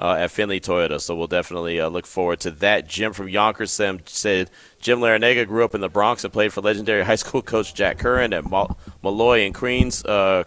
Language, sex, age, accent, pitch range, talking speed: English, male, 30-49, American, 90-110 Hz, 225 wpm